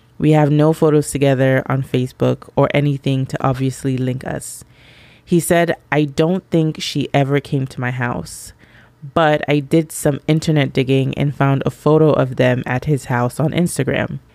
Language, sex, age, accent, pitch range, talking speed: English, female, 20-39, American, 130-150 Hz, 170 wpm